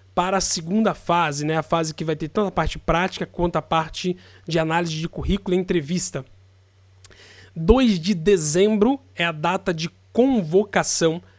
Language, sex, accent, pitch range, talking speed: Portuguese, male, Brazilian, 155-200 Hz, 165 wpm